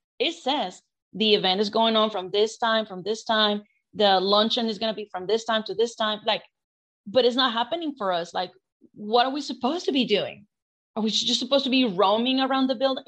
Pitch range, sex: 205-245 Hz, female